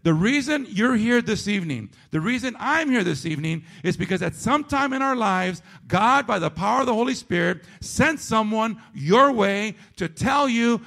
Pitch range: 165-230 Hz